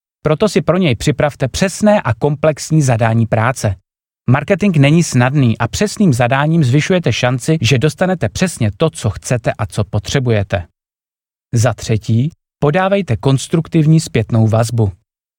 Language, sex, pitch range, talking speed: Czech, male, 110-155 Hz, 130 wpm